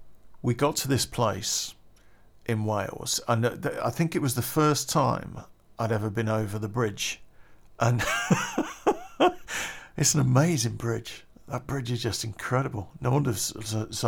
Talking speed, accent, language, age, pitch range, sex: 155 wpm, British, English, 50-69, 105-130 Hz, male